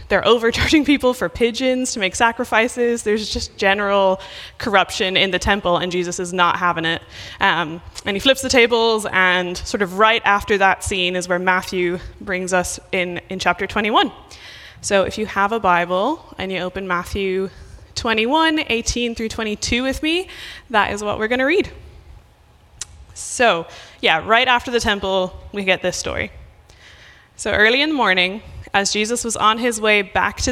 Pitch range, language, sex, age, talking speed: 185-240 Hz, English, female, 20-39, 175 wpm